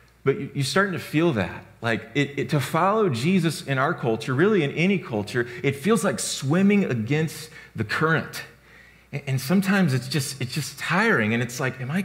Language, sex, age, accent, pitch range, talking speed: English, male, 30-49, American, 130-170 Hz, 190 wpm